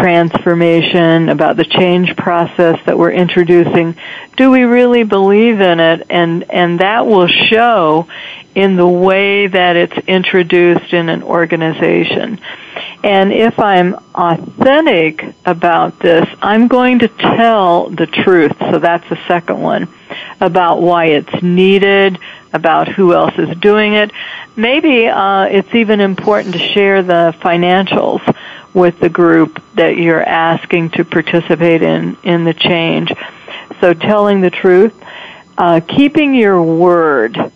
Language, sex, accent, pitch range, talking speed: English, female, American, 170-200 Hz, 135 wpm